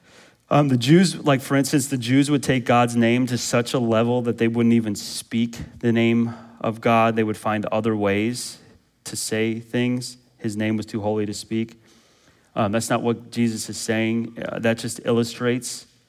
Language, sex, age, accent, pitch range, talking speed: English, male, 30-49, American, 115-155 Hz, 190 wpm